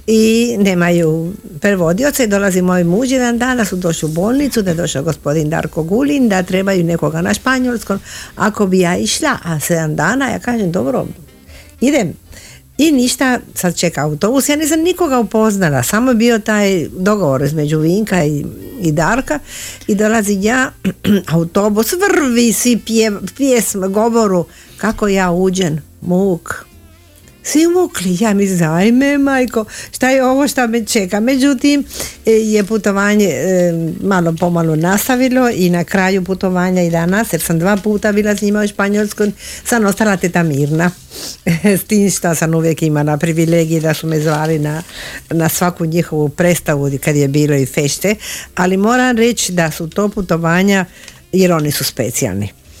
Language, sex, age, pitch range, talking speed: Croatian, female, 50-69, 165-225 Hz, 155 wpm